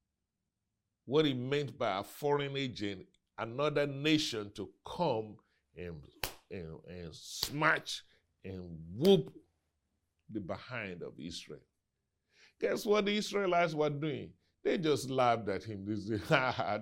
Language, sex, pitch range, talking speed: English, male, 95-140 Hz, 130 wpm